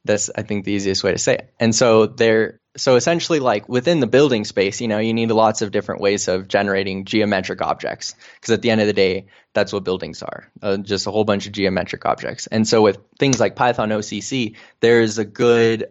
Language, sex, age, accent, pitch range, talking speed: English, male, 20-39, American, 100-115 Hz, 230 wpm